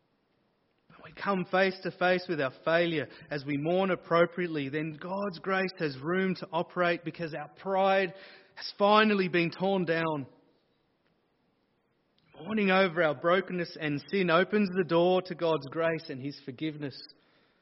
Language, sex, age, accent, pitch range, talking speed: English, male, 30-49, Australian, 155-190 Hz, 140 wpm